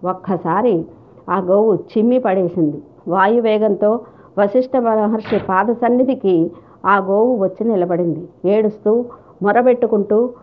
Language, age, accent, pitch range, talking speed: Telugu, 50-69, native, 190-240 Hz, 90 wpm